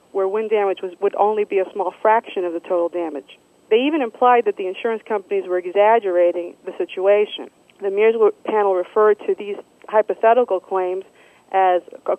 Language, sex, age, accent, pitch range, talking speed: English, female, 40-59, American, 190-245 Hz, 165 wpm